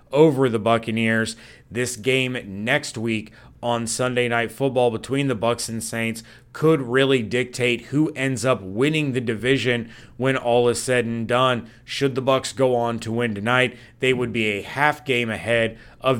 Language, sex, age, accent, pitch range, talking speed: English, male, 30-49, American, 115-135 Hz, 175 wpm